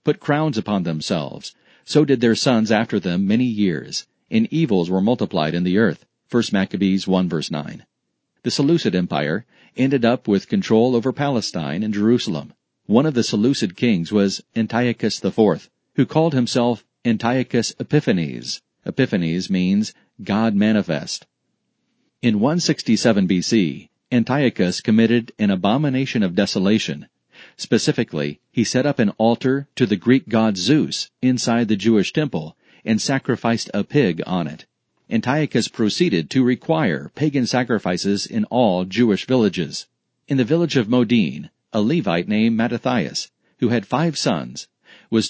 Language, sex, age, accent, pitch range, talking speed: English, male, 40-59, American, 105-130 Hz, 140 wpm